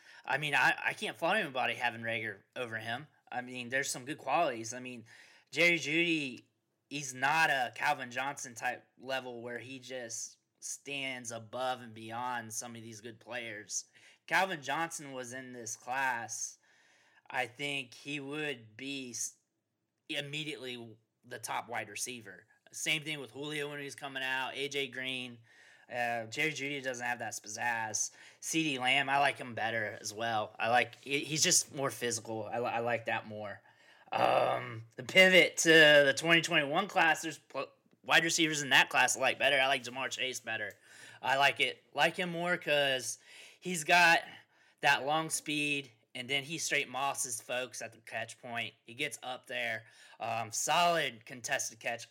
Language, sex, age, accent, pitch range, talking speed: English, male, 20-39, American, 115-145 Hz, 165 wpm